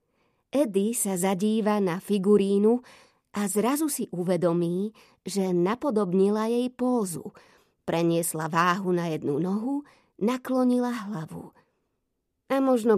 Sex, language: female, Slovak